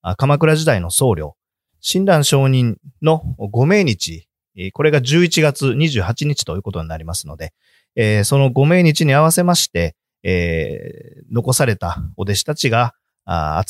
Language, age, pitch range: Japanese, 40-59, 90-150 Hz